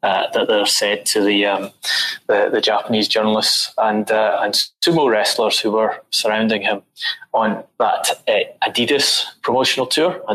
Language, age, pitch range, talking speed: English, 20-39, 100-120 Hz, 155 wpm